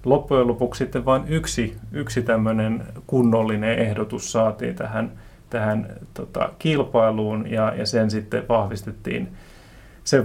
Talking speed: 110 wpm